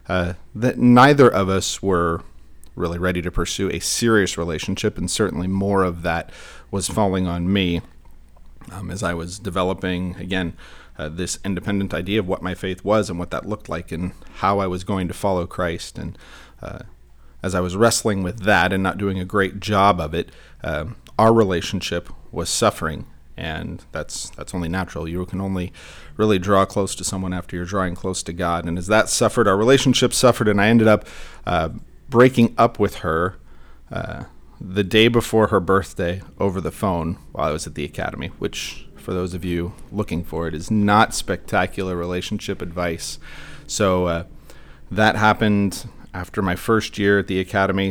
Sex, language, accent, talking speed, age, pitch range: male, English, American, 180 wpm, 40-59, 85-105 Hz